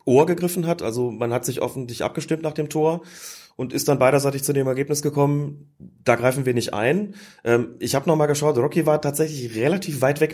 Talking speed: 210 wpm